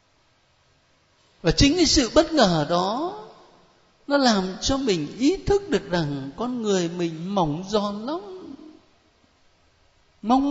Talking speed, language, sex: 125 wpm, Vietnamese, male